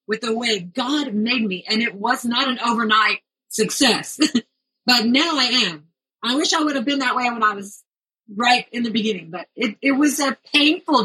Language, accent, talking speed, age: English, American, 205 wpm, 40-59